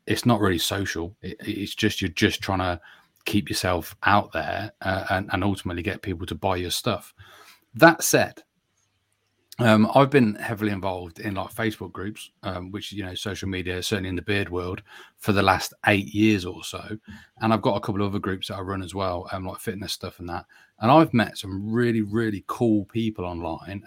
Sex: male